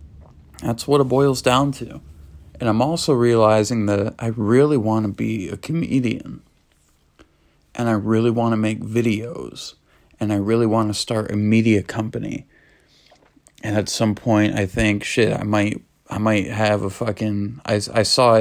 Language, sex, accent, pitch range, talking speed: English, male, American, 100-120 Hz, 165 wpm